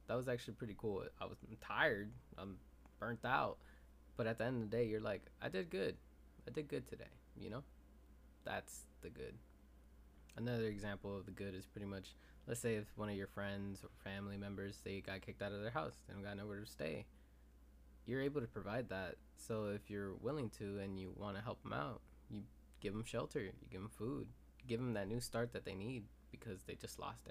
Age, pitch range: 20-39, 75-115 Hz